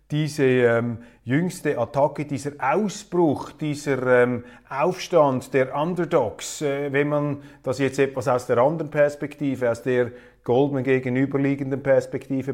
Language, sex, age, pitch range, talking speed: German, male, 30-49, 115-135 Hz, 125 wpm